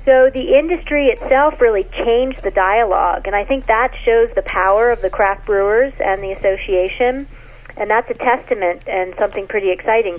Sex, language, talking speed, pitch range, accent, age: female, English, 175 wpm, 195-270 Hz, American, 40-59